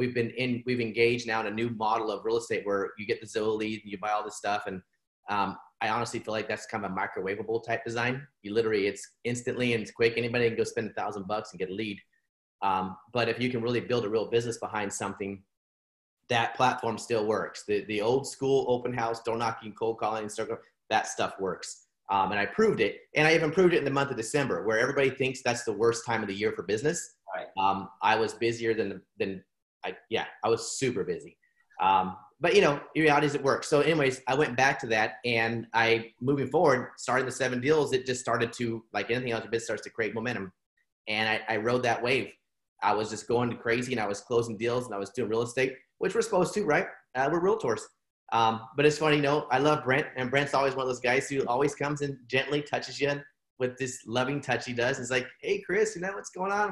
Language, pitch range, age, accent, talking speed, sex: English, 115-140 Hz, 30-49, American, 240 wpm, male